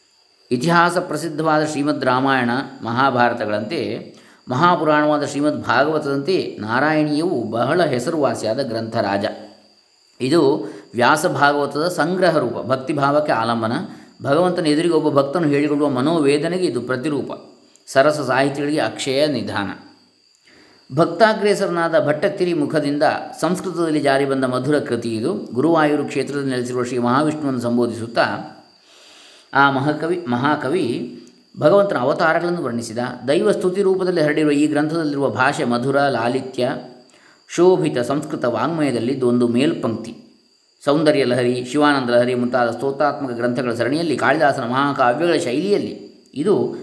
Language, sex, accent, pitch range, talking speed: Kannada, male, native, 125-165 Hz, 95 wpm